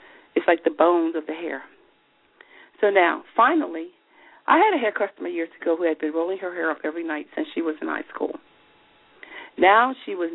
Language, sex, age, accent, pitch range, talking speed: English, female, 40-59, American, 175-290 Hz, 205 wpm